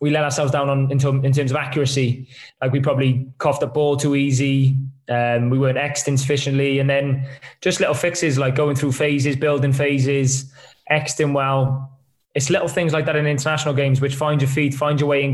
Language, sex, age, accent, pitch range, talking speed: English, male, 20-39, British, 135-145 Hz, 210 wpm